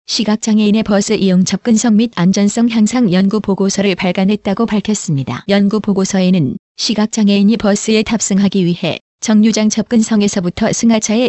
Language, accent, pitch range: Korean, native, 200-225 Hz